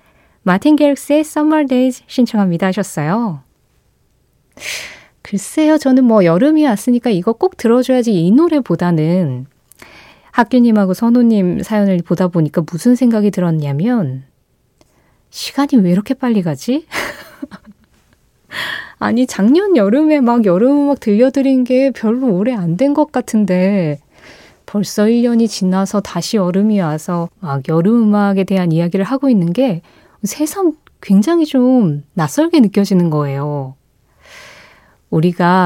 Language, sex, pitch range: Korean, female, 175-255 Hz